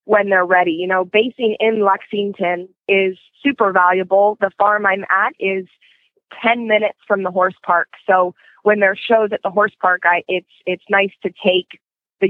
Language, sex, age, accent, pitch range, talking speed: English, female, 20-39, American, 180-200 Hz, 180 wpm